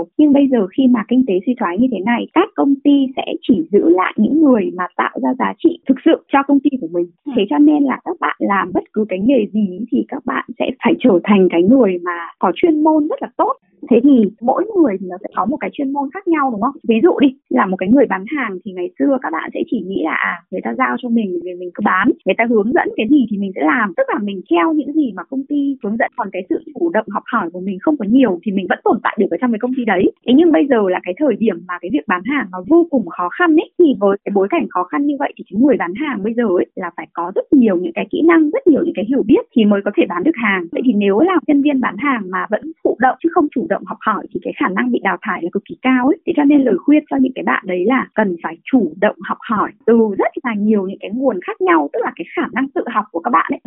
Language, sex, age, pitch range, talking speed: Vietnamese, female, 20-39, 200-295 Hz, 305 wpm